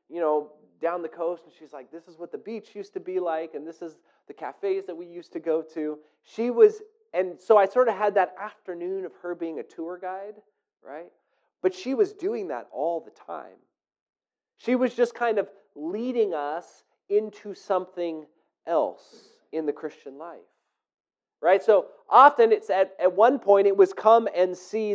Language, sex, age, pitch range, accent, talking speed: English, male, 30-49, 155-230 Hz, American, 190 wpm